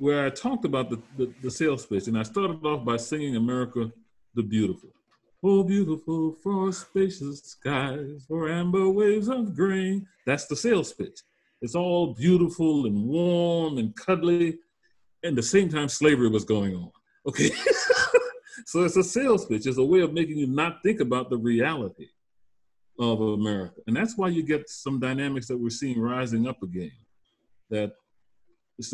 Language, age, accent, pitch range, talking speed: English, 40-59, American, 115-175 Hz, 170 wpm